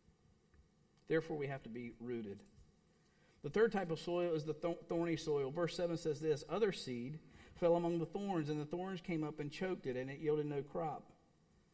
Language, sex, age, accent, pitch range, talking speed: English, male, 50-69, American, 130-180 Hz, 195 wpm